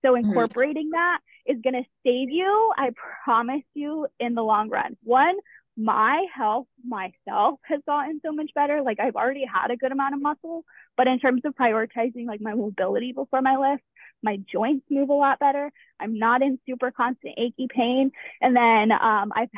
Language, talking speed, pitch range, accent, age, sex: English, 185 wpm, 225-270 Hz, American, 20-39, female